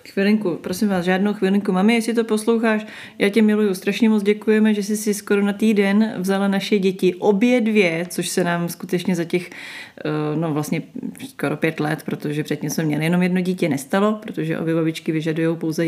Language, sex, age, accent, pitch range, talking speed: Czech, female, 30-49, native, 160-195 Hz, 185 wpm